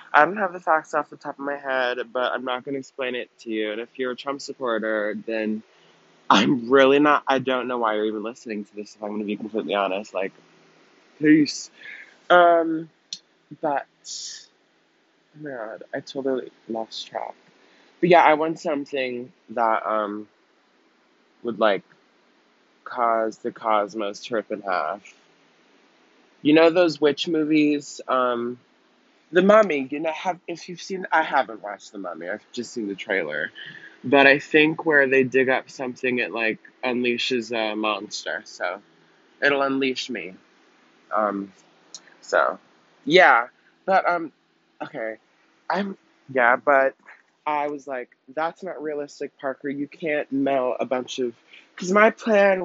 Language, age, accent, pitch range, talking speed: English, 20-39, American, 120-155 Hz, 160 wpm